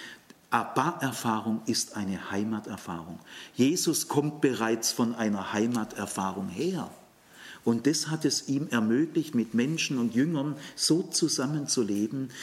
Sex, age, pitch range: male, 50-69, 105-135 Hz